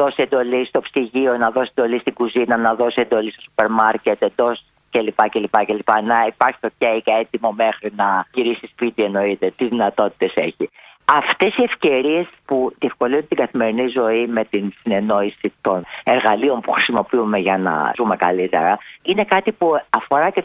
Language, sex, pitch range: Greek, female, 115-190 Hz